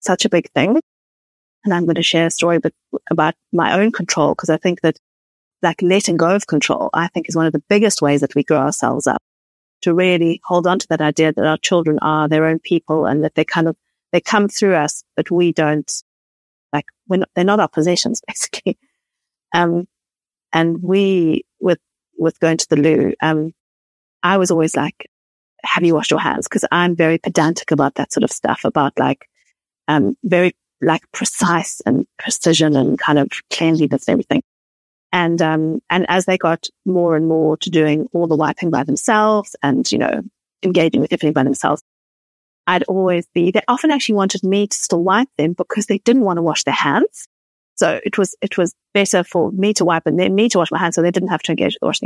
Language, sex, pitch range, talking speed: English, female, 155-195 Hz, 210 wpm